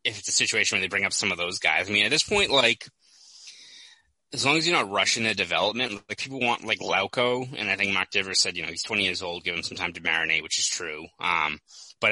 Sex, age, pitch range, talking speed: male, 20-39, 95-120 Hz, 265 wpm